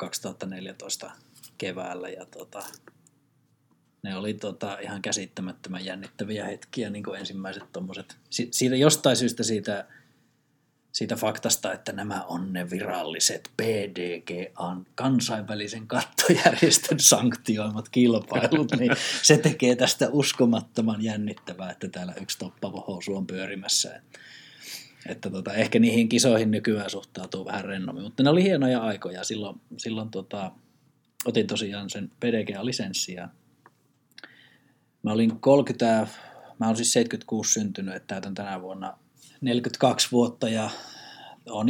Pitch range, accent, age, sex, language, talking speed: 100-125 Hz, native, 20-39, male, Finnish, 110 wpm